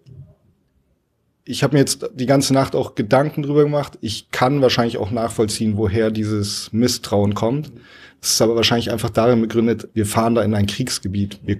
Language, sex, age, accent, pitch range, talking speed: German, male, 30-49, German, 100-120 Hz, 175 wpm